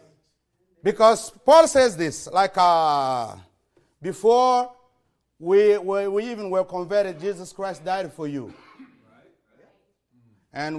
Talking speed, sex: 105 wpm, male